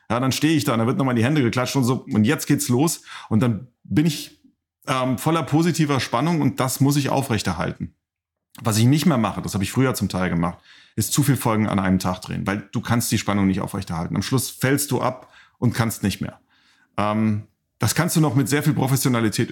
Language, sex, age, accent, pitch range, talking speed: German, male, 40-59, German, 110-145 Hz, 235 wpm